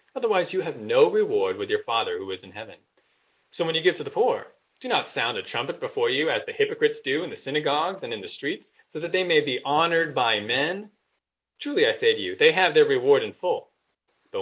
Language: English